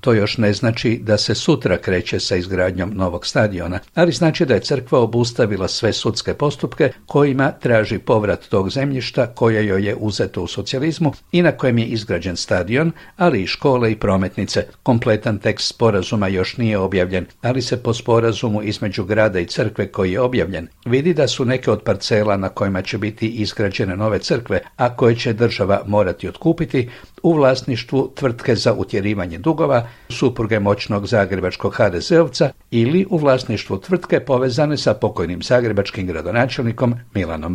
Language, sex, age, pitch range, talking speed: Croatian, male, 60-79, 100-125 Hz, 160 wpm